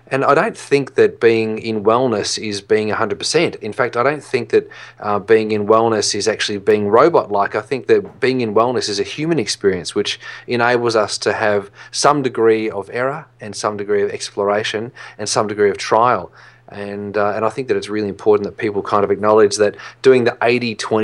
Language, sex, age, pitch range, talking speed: English, male, 30-49, 105-145 Hz, 200 wpm